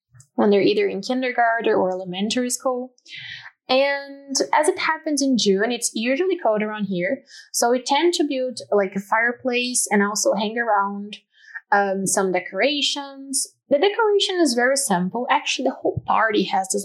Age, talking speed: 20-39, 160 wpm